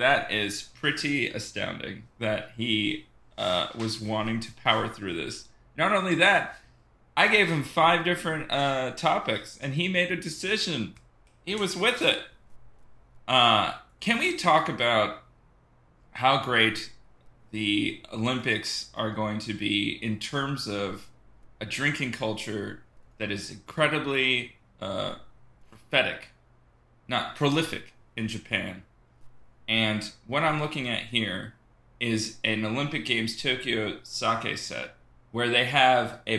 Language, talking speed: English, 125 wpm